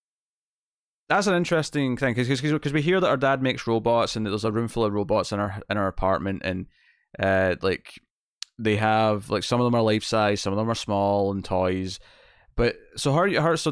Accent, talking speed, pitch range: British, 210 wpm, 100-125 Hz